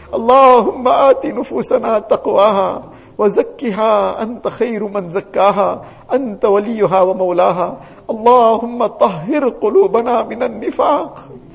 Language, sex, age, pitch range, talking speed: English, male, 50-69, 210-290 Hz, 90 wpm